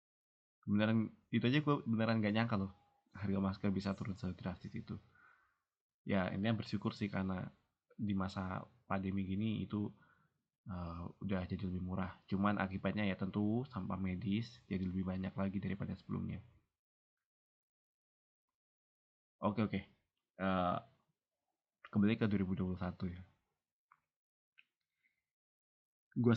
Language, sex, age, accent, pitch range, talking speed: Indonesian, male, 20-39, native, 95-110 Hz, 120 wpm